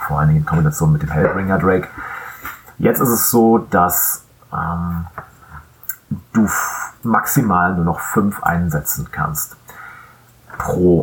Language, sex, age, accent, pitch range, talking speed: German, male, 30-49, German, 85-125 Hz, 130 wpm